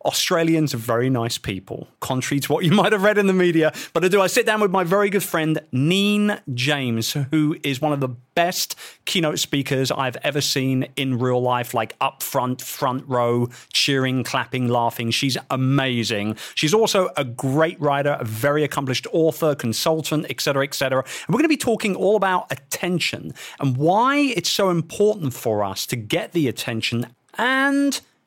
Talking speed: 180 wpm